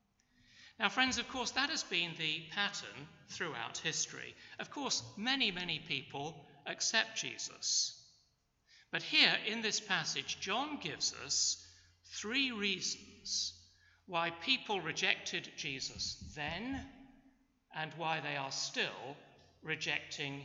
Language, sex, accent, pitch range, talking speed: English, male, British, 140-210 Hz, 115 wpm